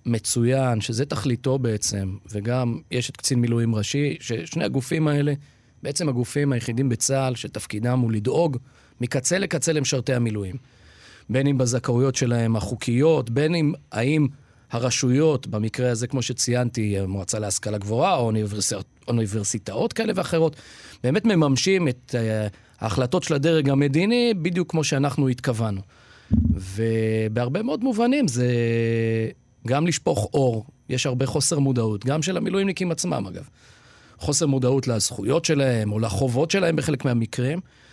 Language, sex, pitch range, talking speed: Hebrew, male, 115-160 Hz, 130 wpm